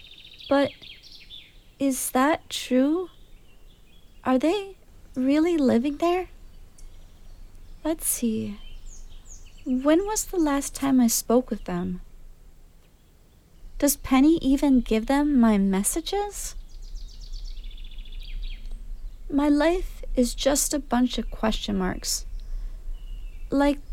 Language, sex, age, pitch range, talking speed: English, female, 30-49, 235-300 Hz, 95 wpm